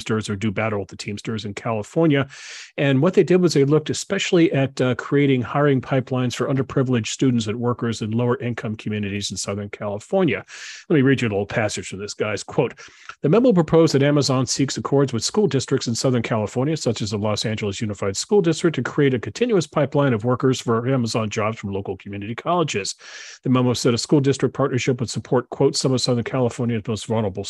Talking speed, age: 205 wpm, 40-59